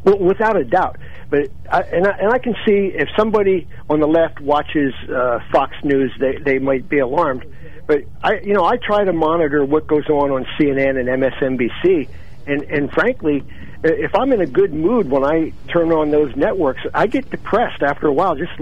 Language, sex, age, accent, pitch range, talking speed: English, male, 60-79, American, 135-175 Hz, 205 wpm